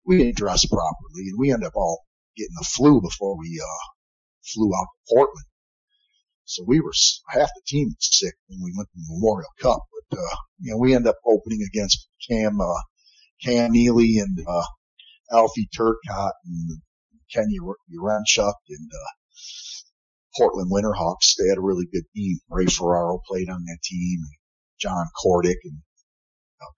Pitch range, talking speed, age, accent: 85-120 Hz, 170 wpm, 50-69, American